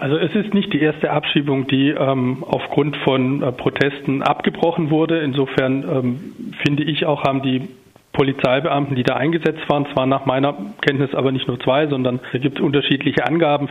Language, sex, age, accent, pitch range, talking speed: German, male, 40-59, German, 135-155 Hz, 175 wpm